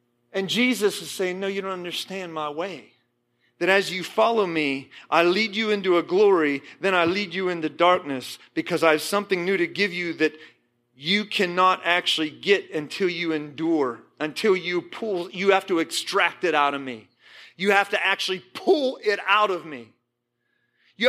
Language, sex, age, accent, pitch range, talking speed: English, male, 40-59, American, 180-270 Hz, 180 wpm